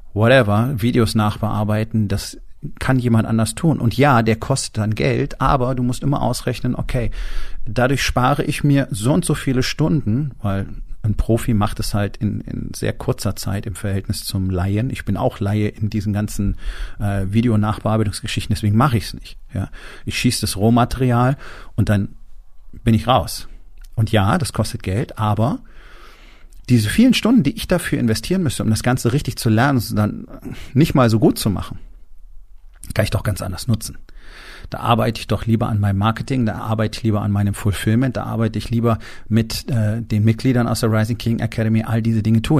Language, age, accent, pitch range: German, 40-59, German, 105-125 Hz